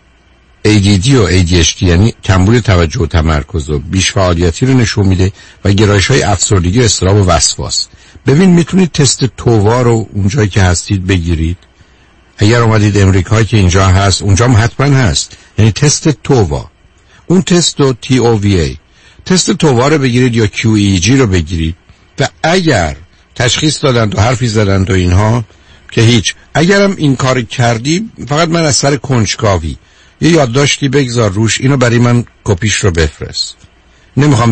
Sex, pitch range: male, 90-125 Hz